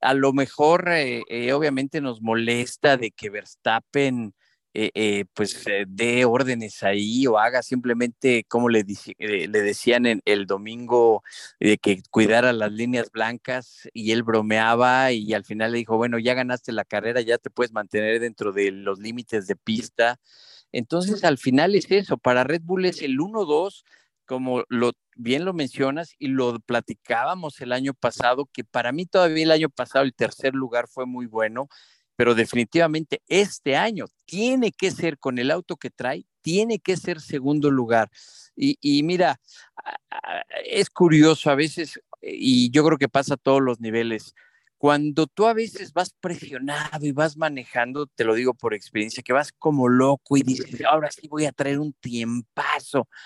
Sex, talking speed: male, 175 wpm